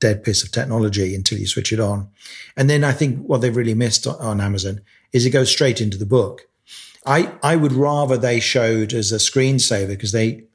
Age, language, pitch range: 40-59, English, 105-130 Hz